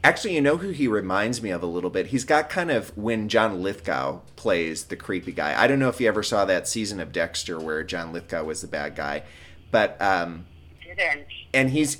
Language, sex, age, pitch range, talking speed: English, male, 30-49, 85-120 Hz, 220 wpm